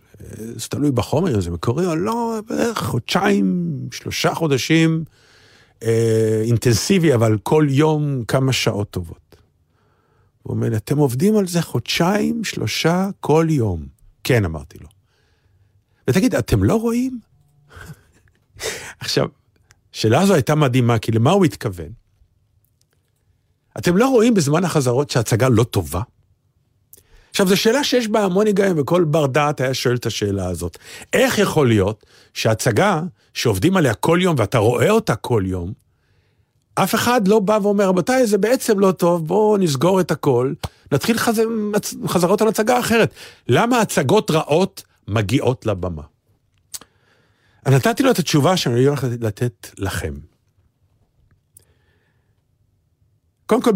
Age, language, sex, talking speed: 50-69, Hebrew, male, 130 wpm